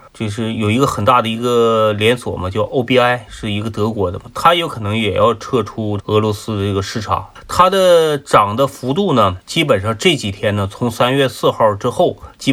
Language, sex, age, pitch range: Chinese, male, 30-49, 105-130 Hz